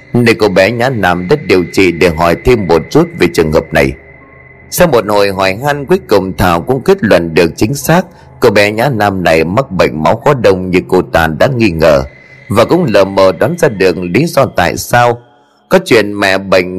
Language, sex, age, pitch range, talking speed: Vietnamese, male, 30-49, 95-130 Hz, 220 wpm